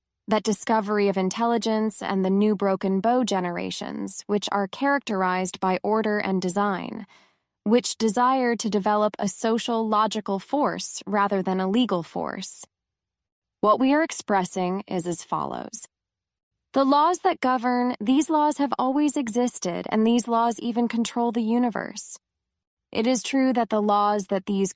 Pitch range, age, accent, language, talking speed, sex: 195-240 Hz, 20-39, American, English, 150 wpm, female